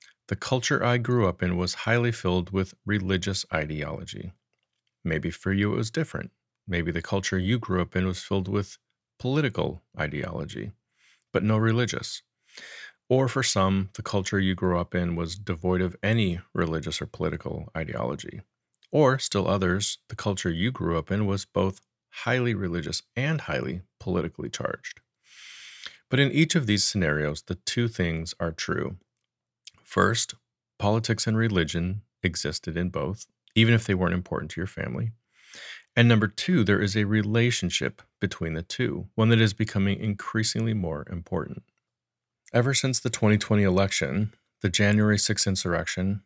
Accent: American